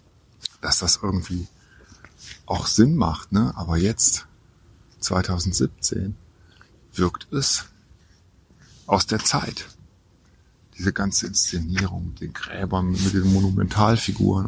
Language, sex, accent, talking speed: German, male, German, 100 wpm